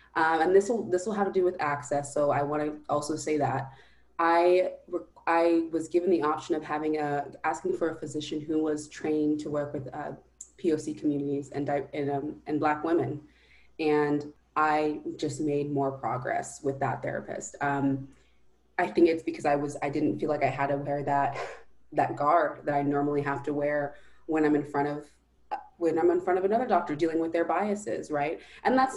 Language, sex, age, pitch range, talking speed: English, female, 20-39, 145-175 Hz, 200 wpm